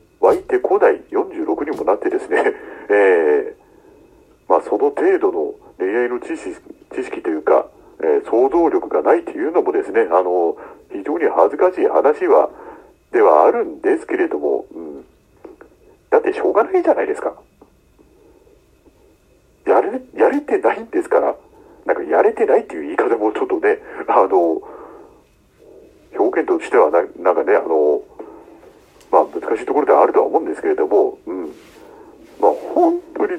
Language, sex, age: Japanese, male, 60-79